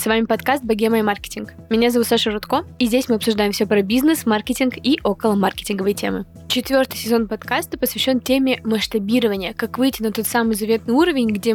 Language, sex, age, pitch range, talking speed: Russian, female, 10-29, 215-250 Hz, 185 wpm